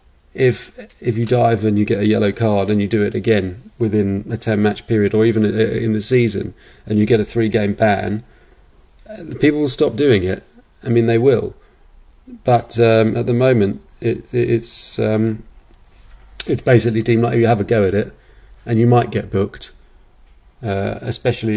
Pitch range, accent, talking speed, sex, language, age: 105-115 Hz, British, 190 wpm, male, English, 30-49